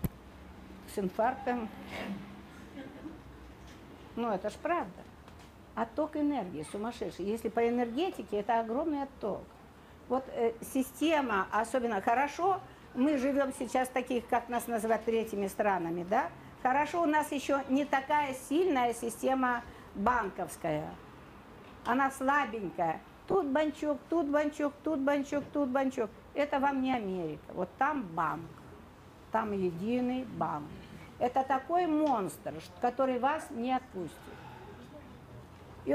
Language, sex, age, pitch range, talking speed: Russian, female, 50-69, 225-290 Hz, 110 wpm